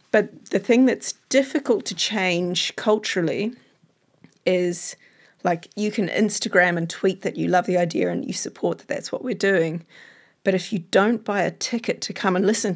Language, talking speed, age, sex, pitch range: English, 185 wpm, 30-49, female, 180-225 Hz